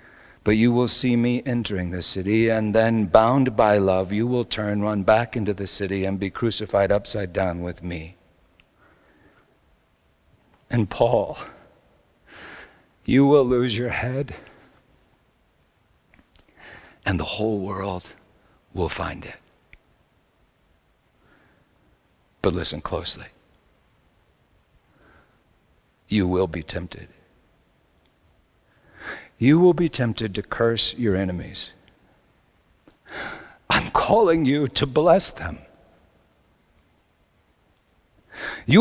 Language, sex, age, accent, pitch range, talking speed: English, male, 60-79, American, 95-145 Hz, 100 wpm